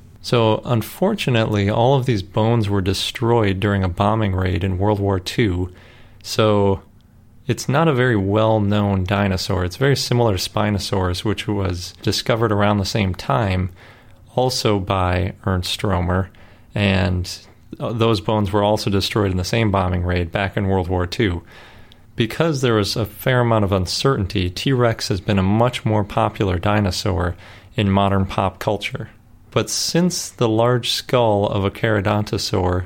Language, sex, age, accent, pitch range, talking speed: English, male, 30-49, American, 95-115 Hz, 155 wpm